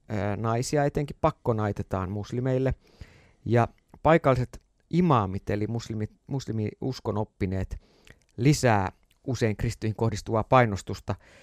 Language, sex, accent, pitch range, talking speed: Finnish, male, native, 105-140 Hz, 85 wpm